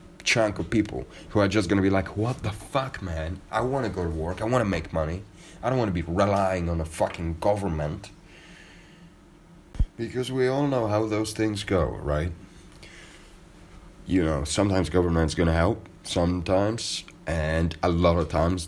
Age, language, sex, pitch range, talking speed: 30-49, English, male, 75-95 Hz, 185 wpm